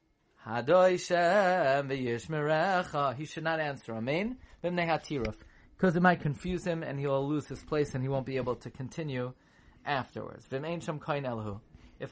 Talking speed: 125 wpm